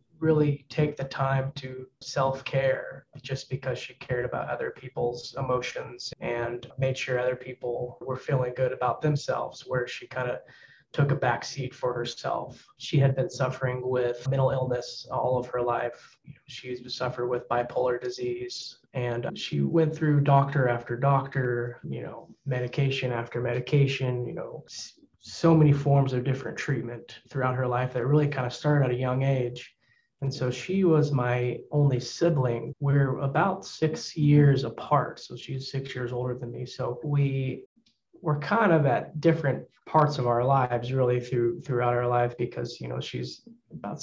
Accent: American